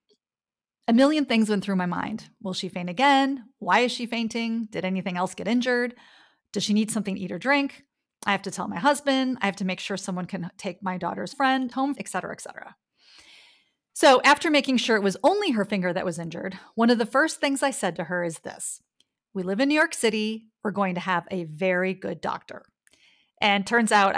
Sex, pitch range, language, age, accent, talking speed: female, 195-275 Hz, English, 30-49, American, 225 wpm